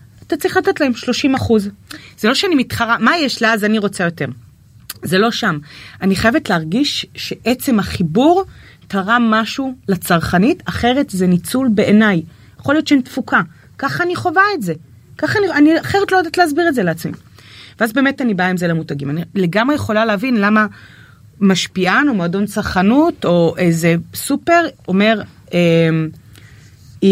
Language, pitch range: Hebrew, 170-260 Hz